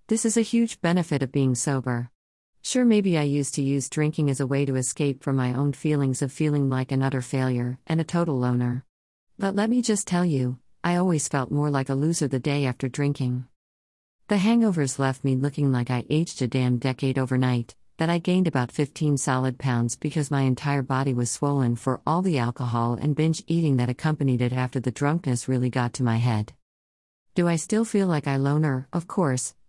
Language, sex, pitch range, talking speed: English, female, 125-155 Hz, 210 wpm